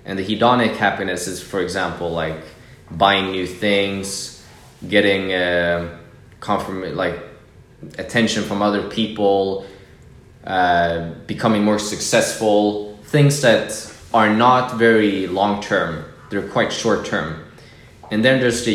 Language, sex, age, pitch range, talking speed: English, male, 20-39, 95-120 Hz, 120 wpm